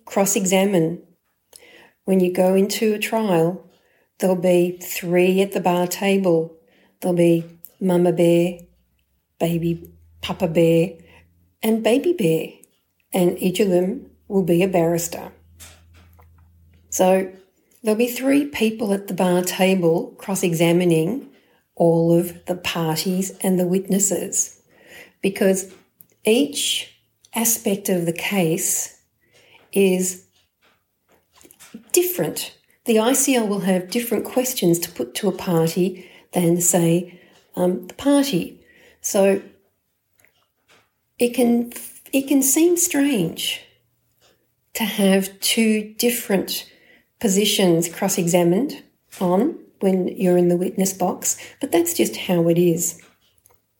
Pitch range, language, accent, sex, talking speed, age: 170-225 Hz, English, Australian, female, 110 wpm, 50-69